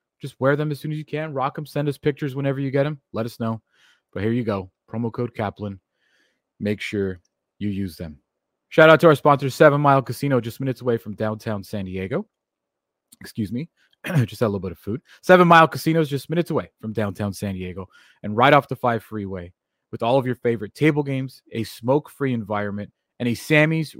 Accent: American